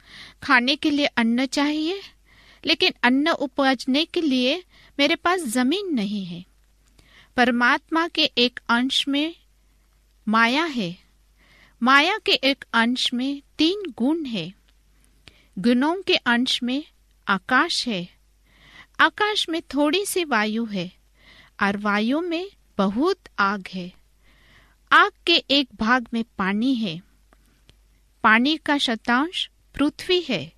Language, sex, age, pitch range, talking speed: Hindi, female, 50-69, 235-320 Hz, 115 wpm